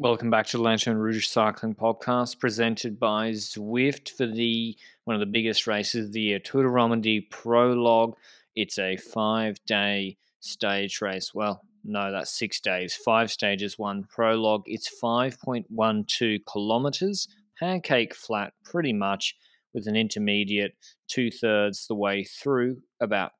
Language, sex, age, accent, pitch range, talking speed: English, male, 20-39, Australian, 105-130 Hz, 140 wpm